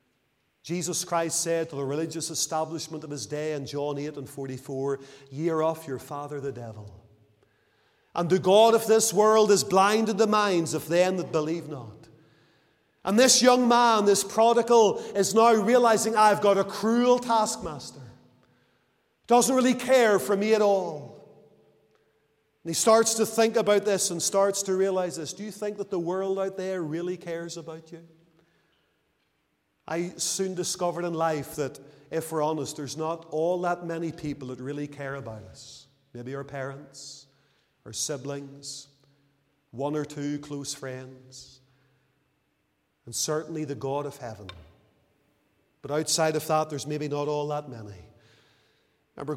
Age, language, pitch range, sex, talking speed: 40-59, English, 140-180 Hz, male, 155 wpm